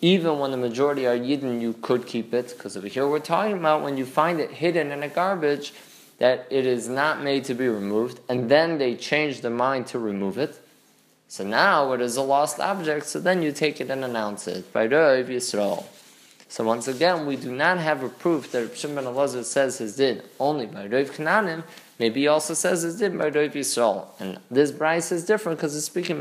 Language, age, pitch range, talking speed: English, 20-39, 120-160 Hz, 205 wpm